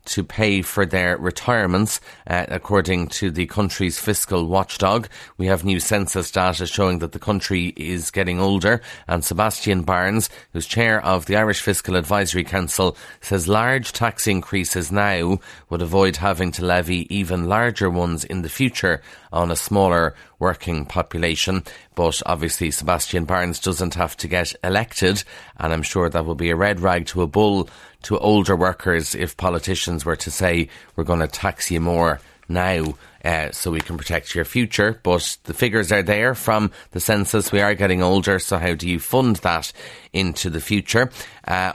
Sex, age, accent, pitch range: male, 30-49, Irish, 85-105 Hz